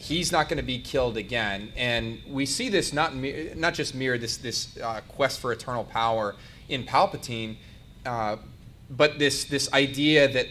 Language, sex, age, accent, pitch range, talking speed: English, male, 30-49, American, 115-135 Hz, 170 wpm